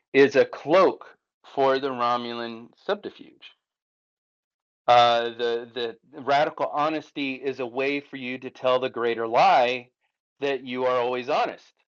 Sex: male